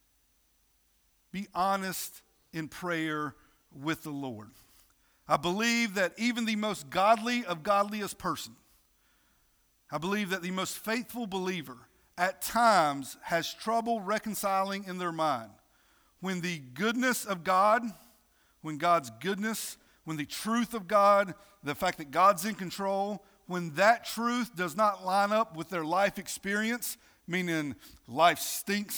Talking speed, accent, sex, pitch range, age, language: 135 wpm, American, male, 170-230 Hz, 50-69, English